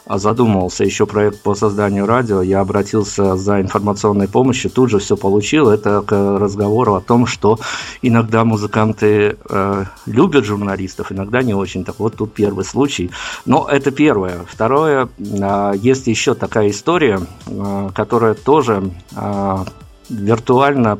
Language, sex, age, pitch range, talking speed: Russian, male, 50-69, 100-120 Hz, 135 wpm